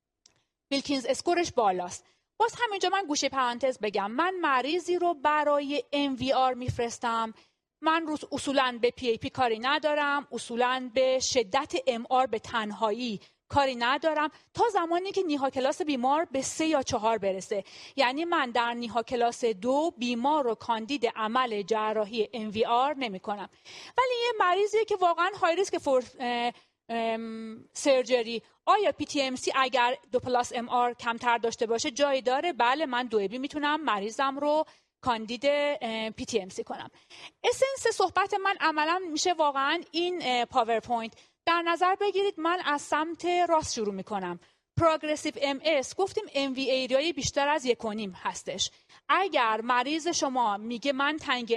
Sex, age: female, 30-49